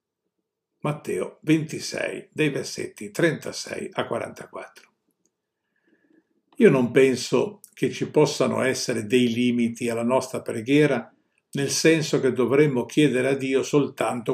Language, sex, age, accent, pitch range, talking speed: Italian, male, 50-69, native, 130-170 Hz, 115 wpm